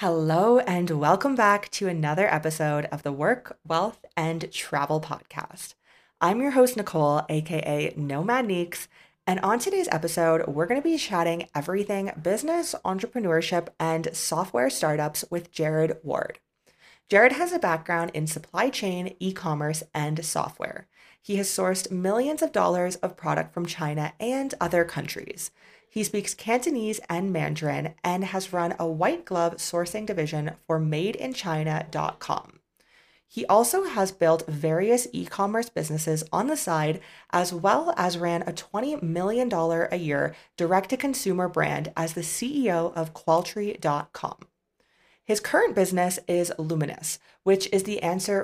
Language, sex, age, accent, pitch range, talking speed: English, female, 30-49, American, 160-195 Hz, 140 wpm